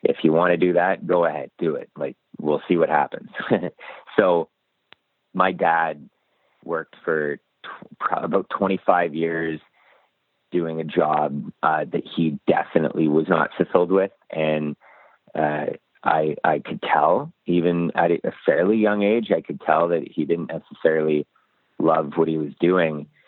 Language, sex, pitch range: English, male, 80-90 Hz